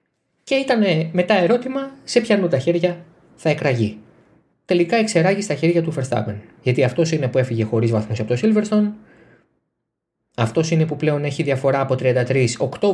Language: Greek